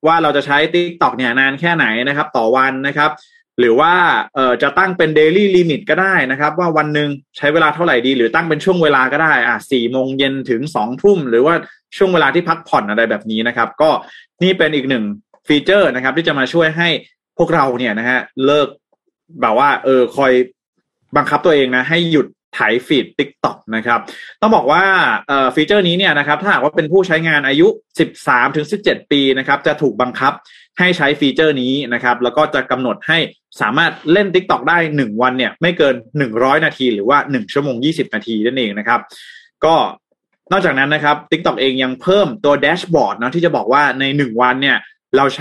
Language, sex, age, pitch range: Thai, male, 20-39, 130-170 Hz